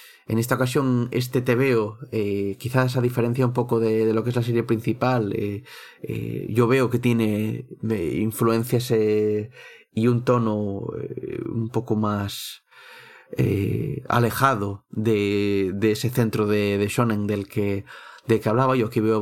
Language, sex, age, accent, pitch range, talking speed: Spanish, male, 30-49, Spanish, 110-125 Hz, 160 wpm